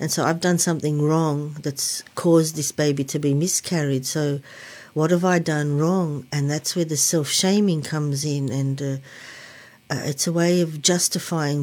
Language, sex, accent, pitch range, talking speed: English, female, Australian, 140-170 Hz, 175 wpm